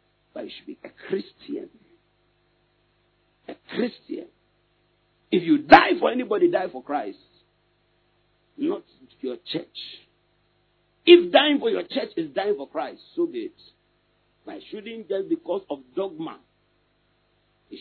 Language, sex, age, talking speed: English, male, 50-69, 130 wpm